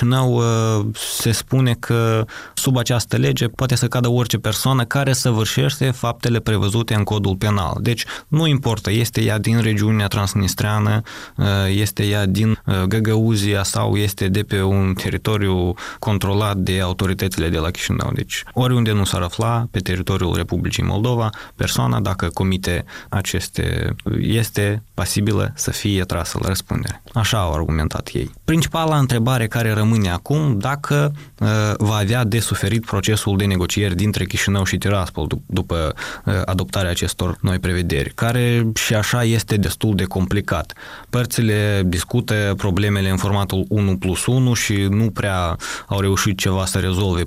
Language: Romanian